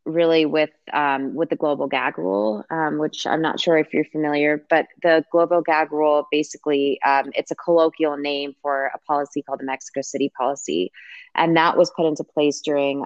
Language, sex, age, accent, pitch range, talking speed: English, female, 20-39, American, 140-155 Hz, 195 wpm